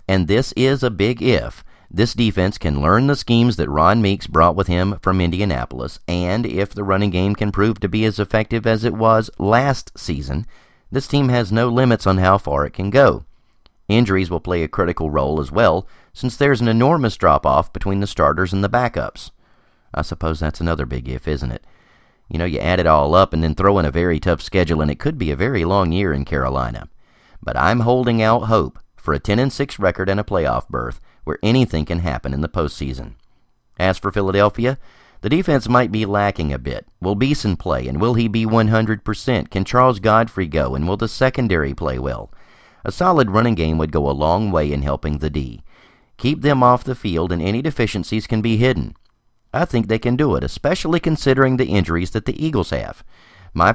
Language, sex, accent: English, male, American